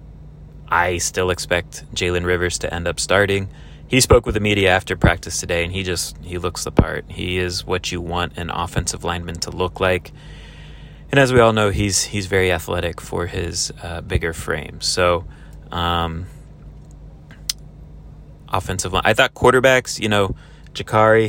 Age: 30-49